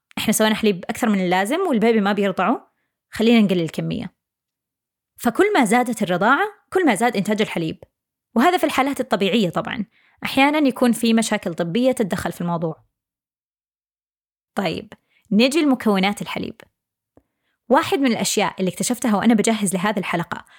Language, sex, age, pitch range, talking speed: Arabic, female, 20-39, 190-245 Hz, 135 wpm